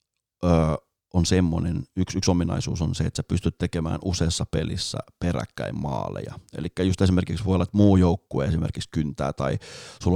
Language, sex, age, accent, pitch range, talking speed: Finnish, male, 30-49, native, 85-100 Hz, 160 wpm